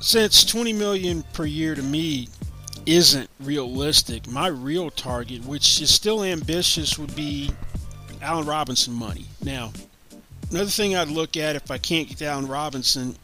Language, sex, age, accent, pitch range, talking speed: English, male, 40-59, American, 125-155 Hz, 150 wpm